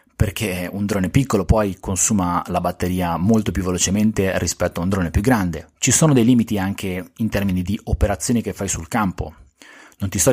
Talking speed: 190 wpm